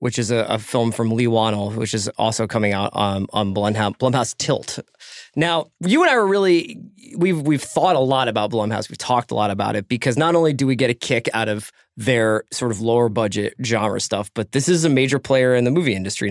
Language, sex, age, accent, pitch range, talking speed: English, male, 20-39, American, 115-150 Hz, 235 wpm